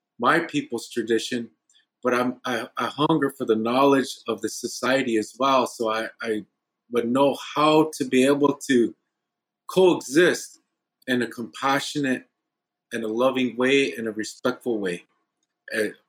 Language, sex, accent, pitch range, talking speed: English, male, American, 115-140 Hz, 145 wpm